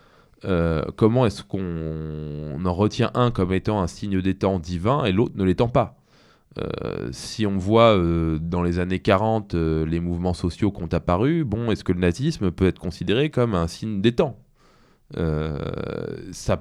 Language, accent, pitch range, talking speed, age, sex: French, French, 90-115 Hz, 185 wpm, 20-39, male